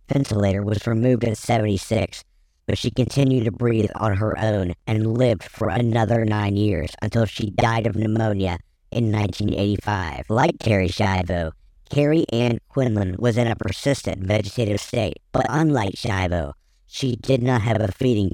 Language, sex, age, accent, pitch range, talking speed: English, male, 50-69, American, 100-120 Hz, 155 wpm